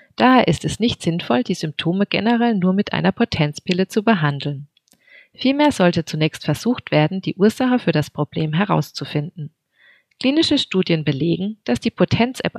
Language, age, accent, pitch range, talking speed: German, 30-49, German, 150-225 Hz, 150 wpm